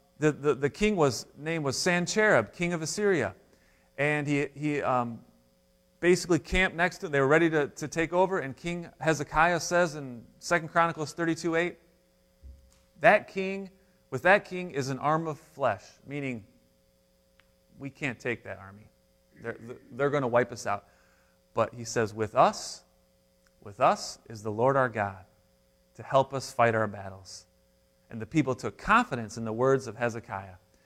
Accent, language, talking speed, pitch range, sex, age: American, English, 170 wpm, 105-150 Hz, male, 30-49